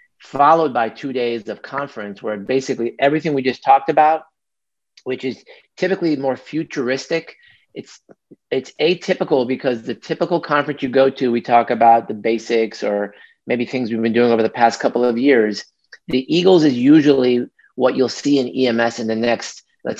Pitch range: 115-140 Hz